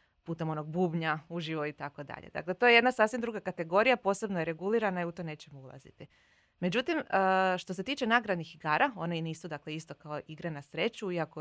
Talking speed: 195 wpm